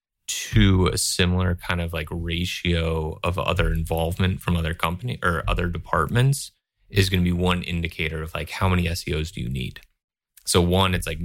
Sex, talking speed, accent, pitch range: male, 180 wpm, American, 85-100 Hz